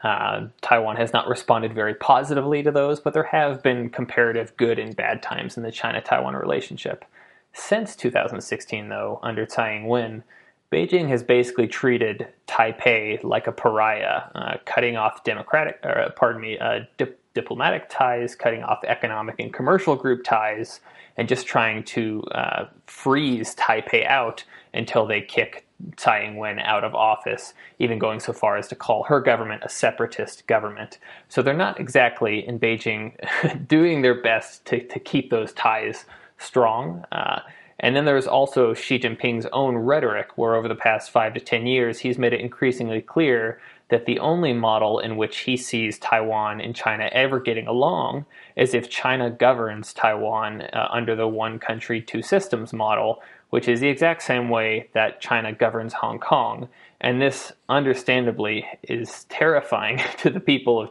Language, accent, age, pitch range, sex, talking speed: English, American, 20-39, 110-130 Hz, male, 160 wpm